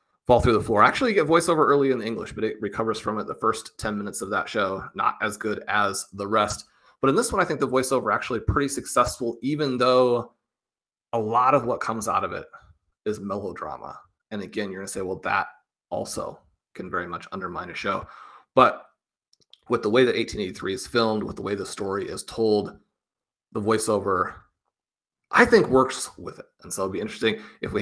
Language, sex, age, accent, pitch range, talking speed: English, male, 30-49, American, 105-130 Hz, 205 wpm